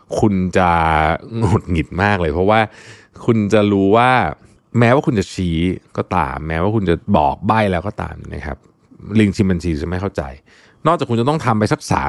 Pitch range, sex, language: 90-125 Hz, male, Thai